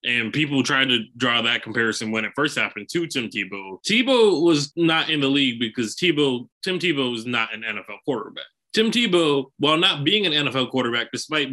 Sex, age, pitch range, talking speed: male, 20-39, 120-170 Hz, 200 wpm